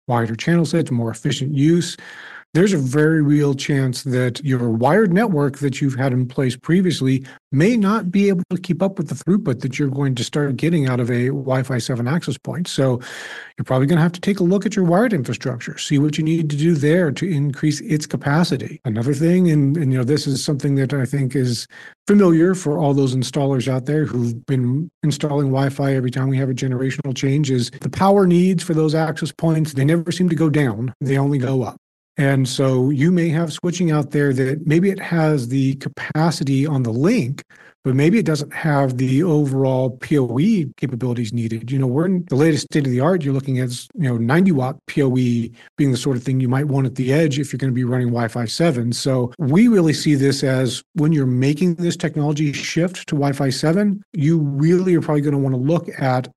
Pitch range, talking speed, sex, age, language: 130-160 Hz, 220 wpm, male, 40-59, English